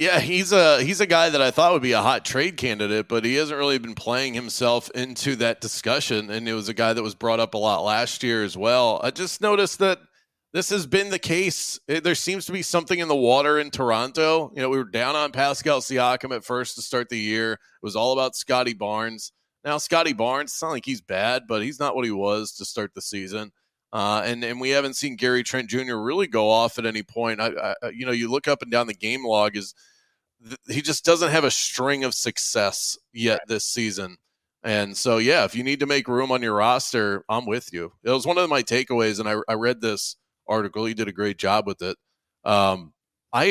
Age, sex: 30-49, male